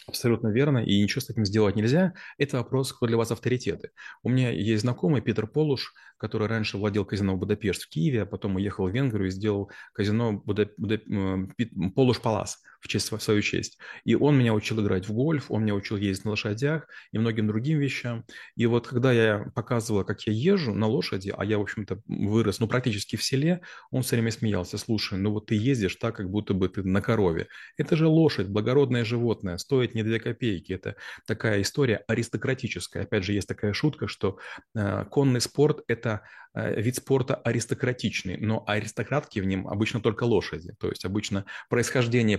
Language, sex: Russian, male